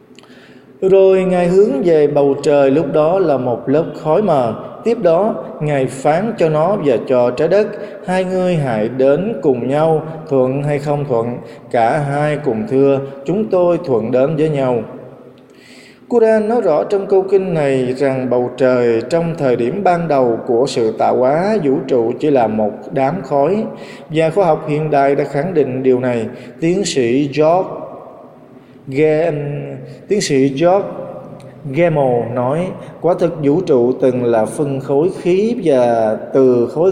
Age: 20-39